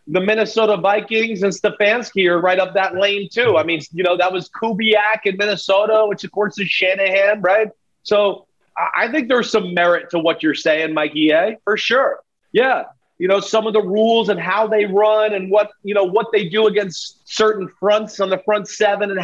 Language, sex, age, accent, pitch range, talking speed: English, male, 30-49, American, 190-220 Hz, 205 wpm